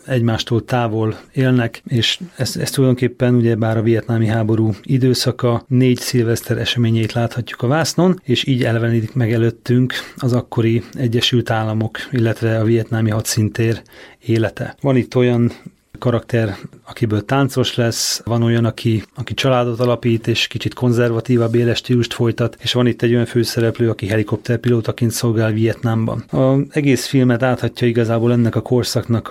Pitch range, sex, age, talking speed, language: 115-125 Hz, male, 30-49, 140 wpm, Hungarian